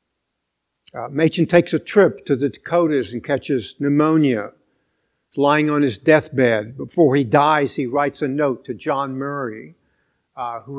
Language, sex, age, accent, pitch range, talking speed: English, male, 60-79, American, 130-160 Hz, 150 wpm